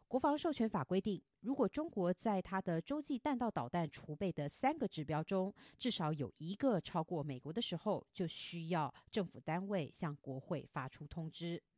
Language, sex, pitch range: Chinese, female, 160-225 Hz